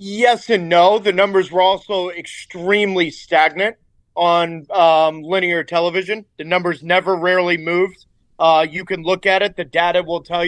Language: English